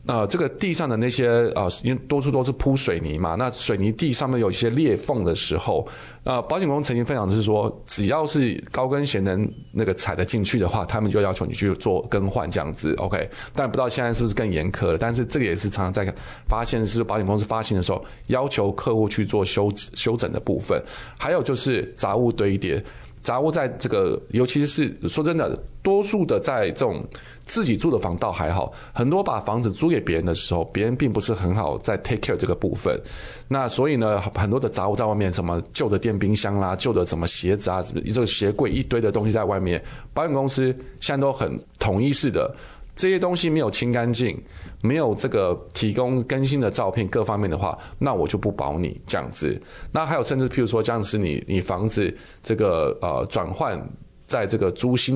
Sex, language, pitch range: male, Chinese, 100-135 Hz